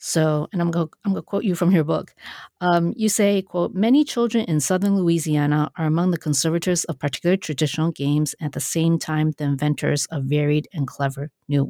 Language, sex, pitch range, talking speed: English, female, 150-175 Hz, 205 wpm